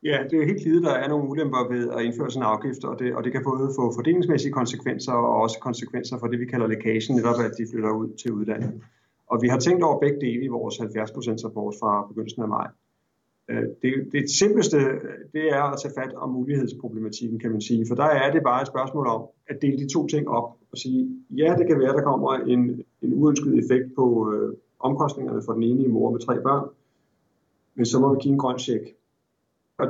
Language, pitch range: Danish, 120-140 Hz